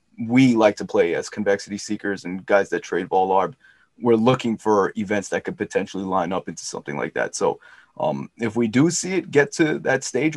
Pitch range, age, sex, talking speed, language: 105-120 Hz, 20-39, male, 215 wpm, English